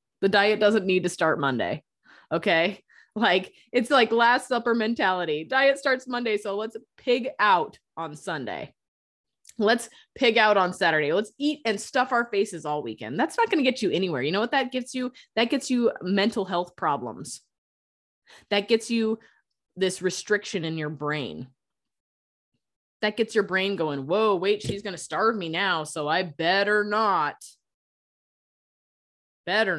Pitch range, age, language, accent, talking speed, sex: 165-230 Hz, 20-39, English, American, 165 wpm, female